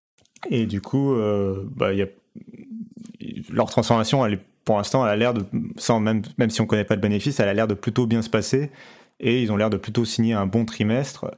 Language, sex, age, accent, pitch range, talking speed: French, male, 30-49, French, 105-125 Hz, 225 wpm